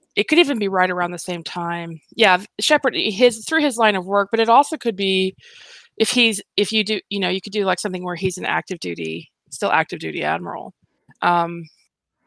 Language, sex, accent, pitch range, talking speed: English, female, American, 175-220 Hz, 215 wpm